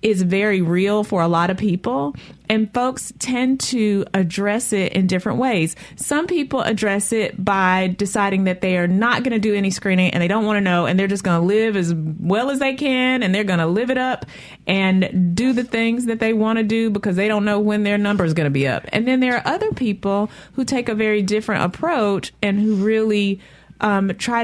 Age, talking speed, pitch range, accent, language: 30-49, 230 wpm, 175-220 Hz, American, English